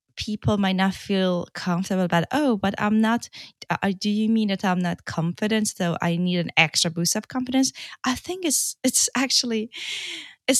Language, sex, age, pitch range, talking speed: English, female, 20-39, 180-225 Hz, 180 wpm